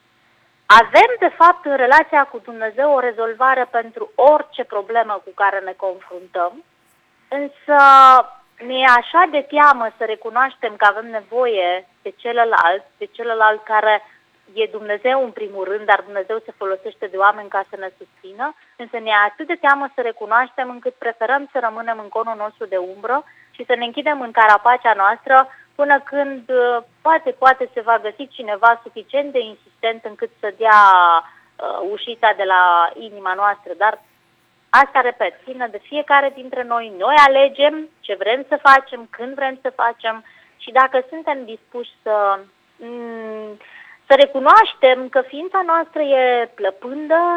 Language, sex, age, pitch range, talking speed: Romanian, female, 20-39, 220-280 Hz, 150 wpm